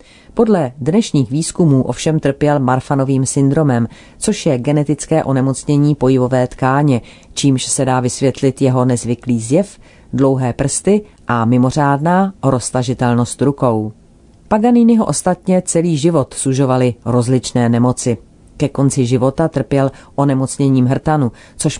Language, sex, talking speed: Czech, female, 110 wpm